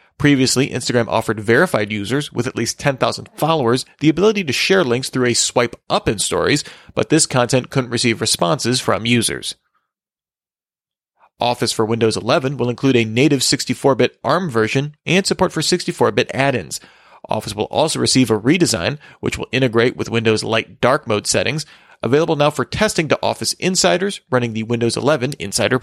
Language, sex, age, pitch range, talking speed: English, male, 30-49, 115-145 Hz, 165 wpm